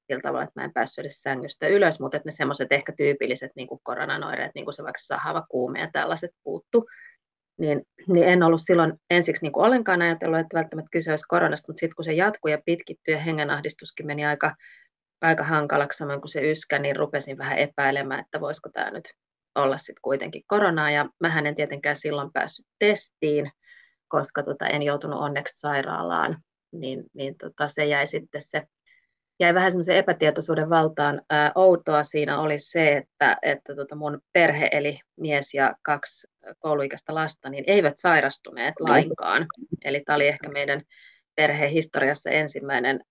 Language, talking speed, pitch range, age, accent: Finnish, 165 wpm, 145-175 Hz, 30-49, native